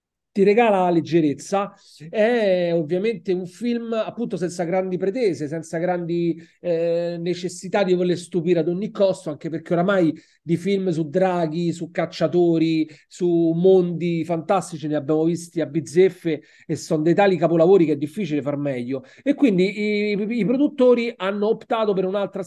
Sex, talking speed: male, 155 wpm